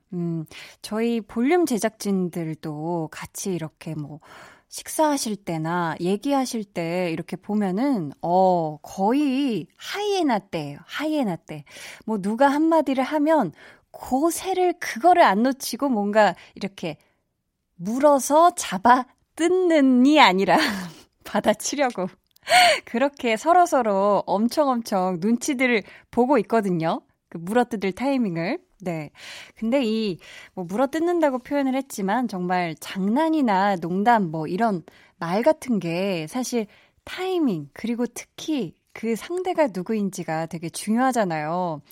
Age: 20-39